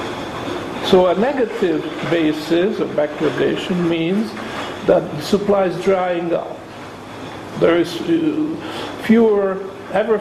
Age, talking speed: 50-69, 100 wpm